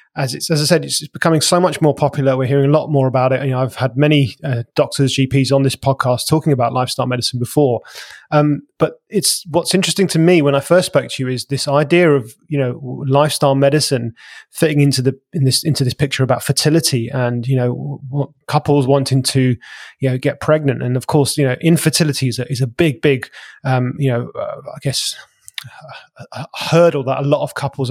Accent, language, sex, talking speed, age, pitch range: British, English, male, 215 wpm, 20-39, 135-160 Hz